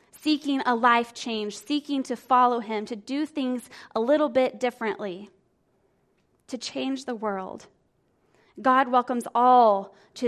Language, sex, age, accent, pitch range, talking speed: English, female, 20-39, American, 225-265 Hz, 135 wpm